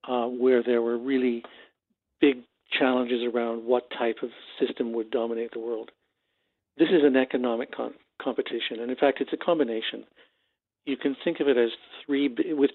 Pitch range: 115-130 Hz